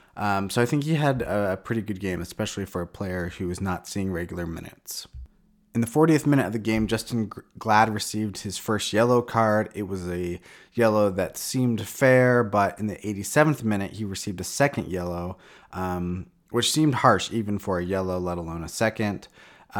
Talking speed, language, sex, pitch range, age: 195 wpm, English, male, 90-115 Hz, 20-39